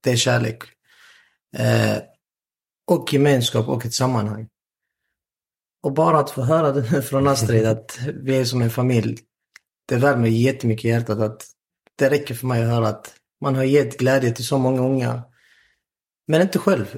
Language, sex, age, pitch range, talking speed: Swedish, male, 30-49, 120-150 Hz, 155 wpm